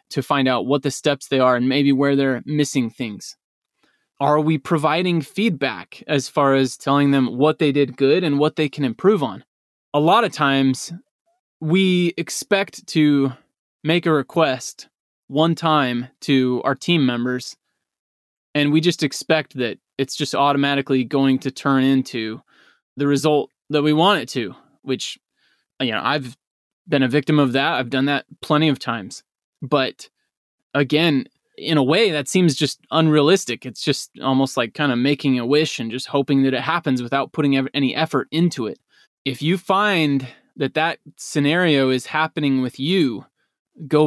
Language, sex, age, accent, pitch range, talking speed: English, male, 20-39, American, 130-155 Hz, 170 wpm